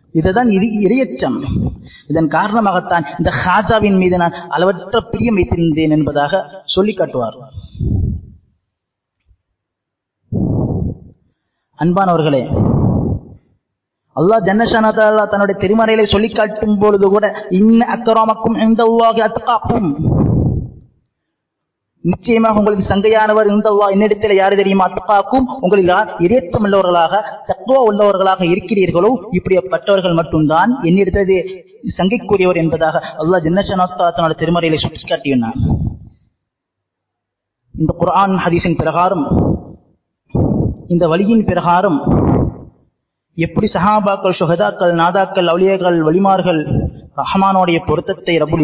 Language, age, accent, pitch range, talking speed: Tamil, 20-39, native, 165-210 Hz, 85 wpm